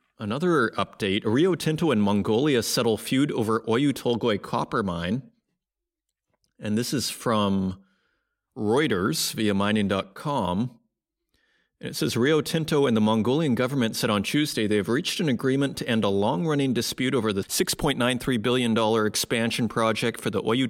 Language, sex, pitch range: English, male, 110-145 Hz